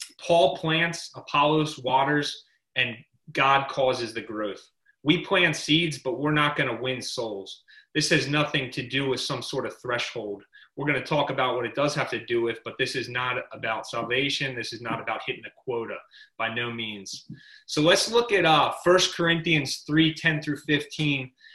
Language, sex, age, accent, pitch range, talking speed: English, male, 30-49, American, 135-165 Hz, 190 wpm